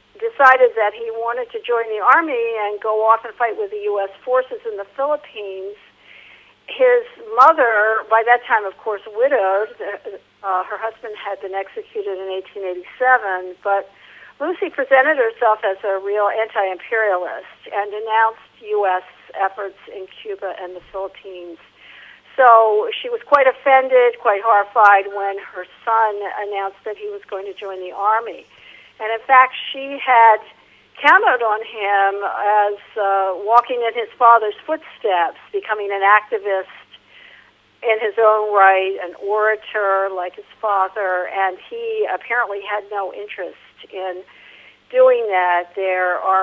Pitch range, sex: 195-235 Hz, female